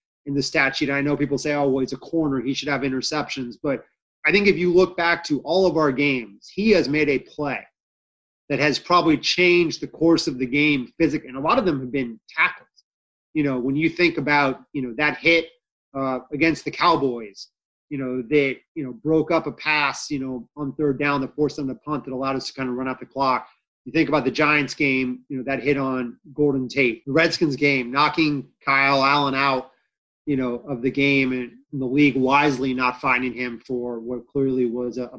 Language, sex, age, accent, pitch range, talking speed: English, male, 30-49, American, 130-155 Hz, 225 wpm